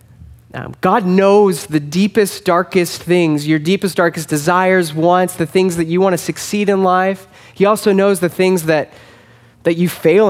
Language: English